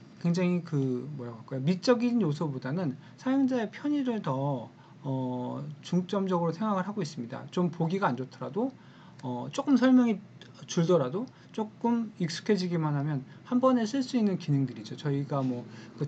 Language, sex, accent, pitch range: Korean, male, native, 140-200 Hz